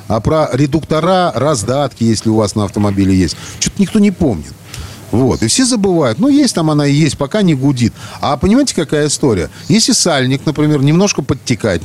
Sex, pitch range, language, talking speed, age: male, 110-175 Hz, Russian, 180 wpm, 40-59